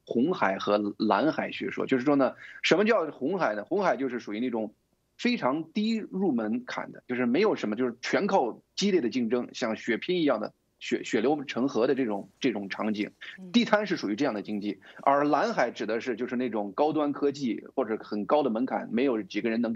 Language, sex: Chinese, male